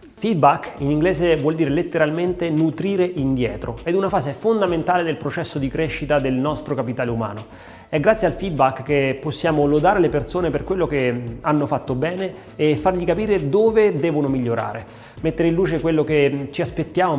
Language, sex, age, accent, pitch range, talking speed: Italian, male, 30-49, native, 140-180 Hz, 170 wpm